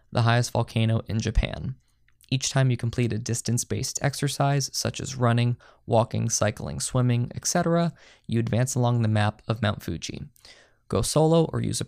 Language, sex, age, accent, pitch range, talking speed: English, male, 20-39, American, 110-125 Hz, 165 wpm